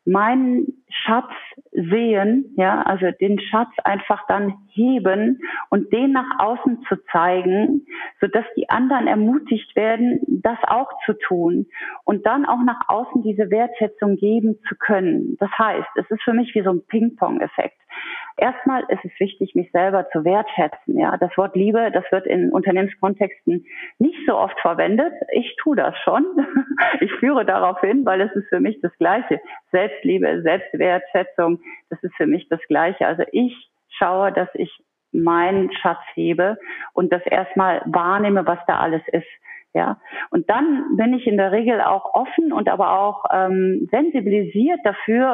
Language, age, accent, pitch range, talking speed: German, 40-59, German, 195-260 Hz, 160 wpm